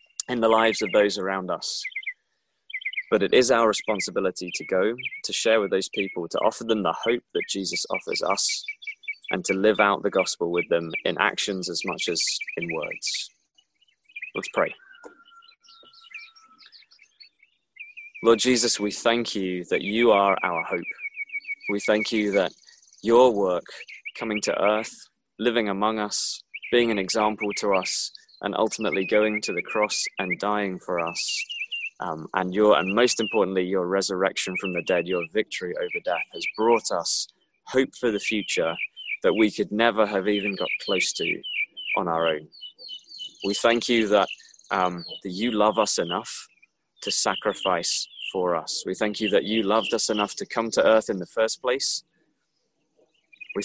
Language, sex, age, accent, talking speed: English, male, 20-39, British, 165 wpm